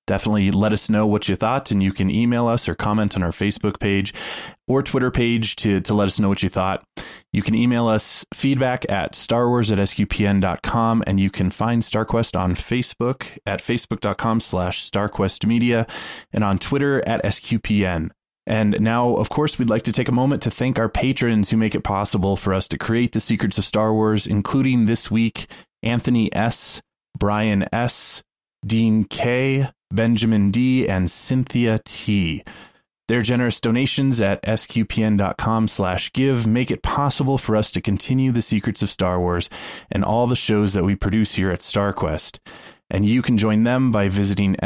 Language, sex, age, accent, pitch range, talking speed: English, male, 20-39, American, 100-120 Hz, 175 wpm